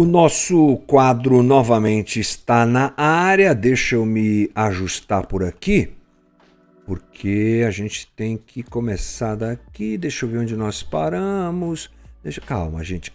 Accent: Brazilian